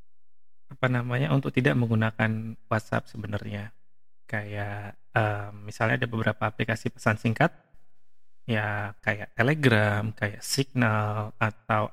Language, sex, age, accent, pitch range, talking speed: English, male, 20-39, Indonesian, 115-145 Hz, 105 wpm